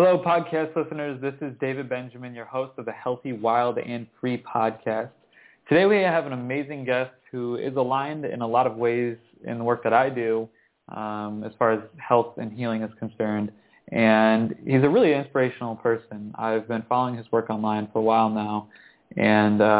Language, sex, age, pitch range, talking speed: English, male, 20-39, 110-135 Hz, 190 wpm